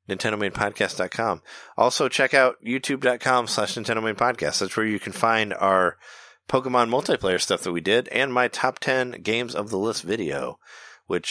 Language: English